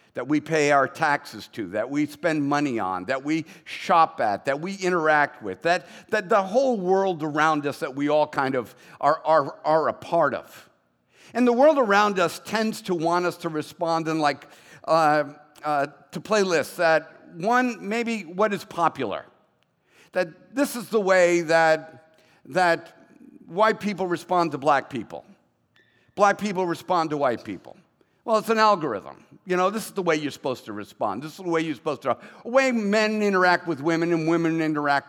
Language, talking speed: English, 190 wpm